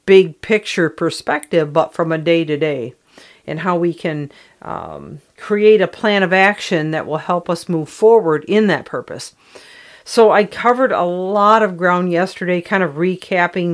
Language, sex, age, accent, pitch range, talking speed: English, female, 50-69, American, 160-185 Hz, 160 wpm